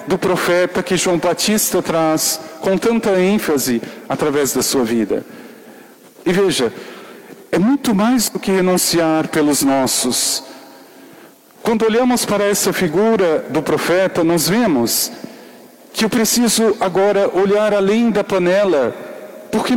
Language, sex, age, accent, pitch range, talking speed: Portuguese, male, 50-69, Brazilian, 160-220 Hz, 125 wpm